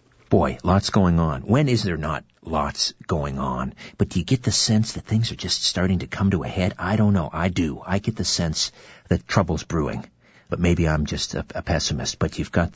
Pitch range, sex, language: 80-105 Hz, male, English